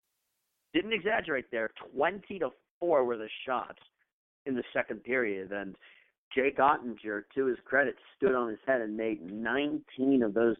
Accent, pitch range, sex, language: American, 105-125 Hz, male, English